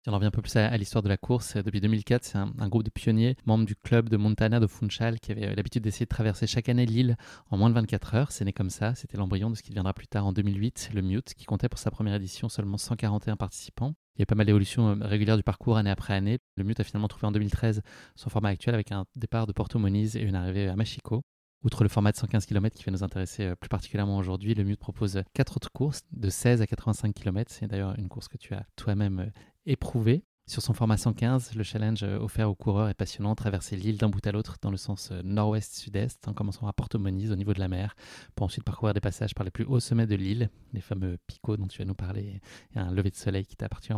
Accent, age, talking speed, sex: French, 20-39, 260 wpm, male